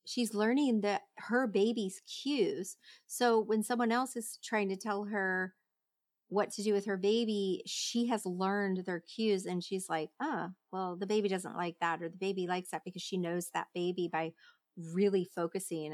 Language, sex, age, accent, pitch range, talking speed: English, female, 30-49, American, 180-215 Hz, 190 wpm